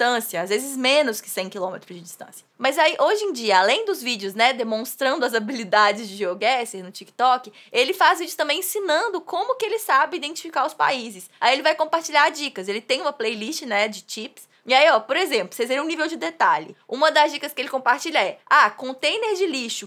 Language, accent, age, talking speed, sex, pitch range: English, Brazilian, 20-39, 210 wpm, female, 240-340 Hz